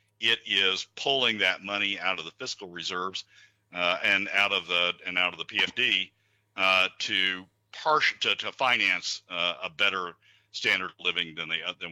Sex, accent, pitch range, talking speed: male, American, 95-110 Hz, 180 wpm